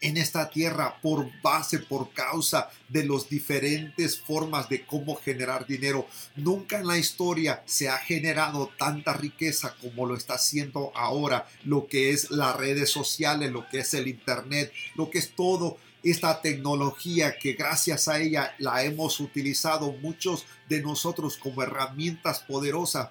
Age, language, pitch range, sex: 40-59, English, 135-160 Hz, male